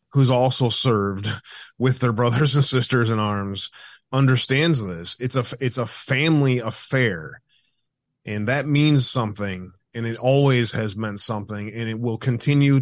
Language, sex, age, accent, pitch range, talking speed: English, male, 20-39, American, 115-135 Hz, 150 wpm